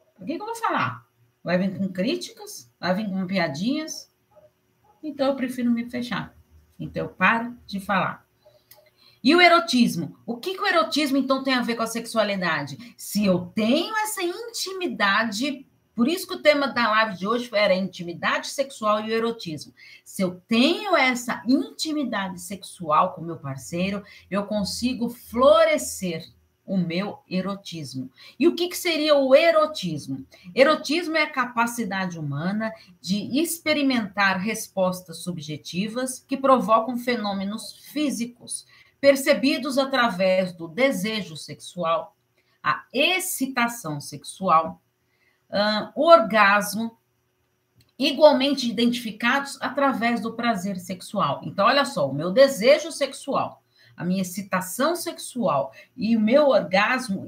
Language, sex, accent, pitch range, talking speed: Portuguese, female, Brazilian, 185-280 Hz, 130 wpm